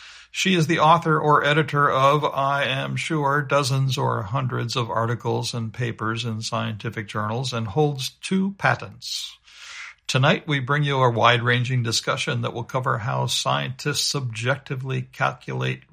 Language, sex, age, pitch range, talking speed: English, male, 60-79, 115-140 Hz, 145 wpm